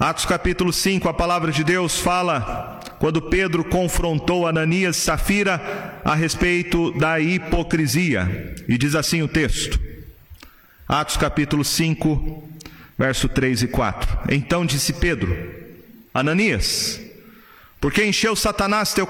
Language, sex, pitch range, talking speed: Portuguese, male, 140-200 Hz, 125 wpm